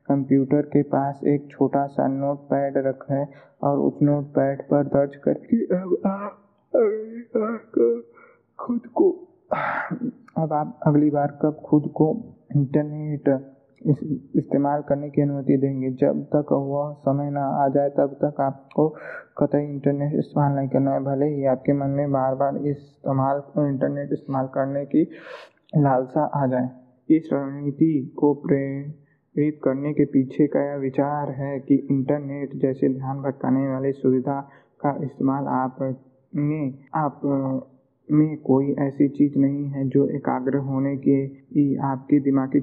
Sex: male